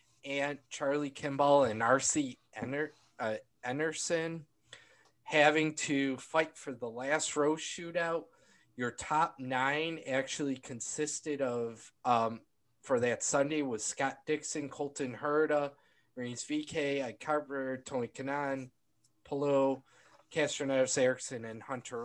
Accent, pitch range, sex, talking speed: American, 130-150 Hz, male, 115 wpm